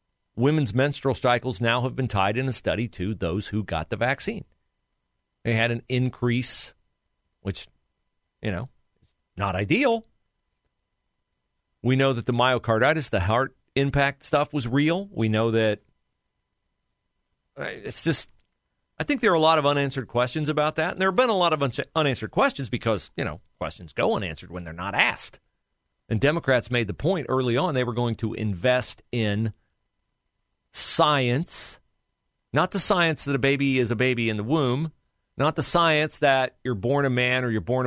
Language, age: English, 40-59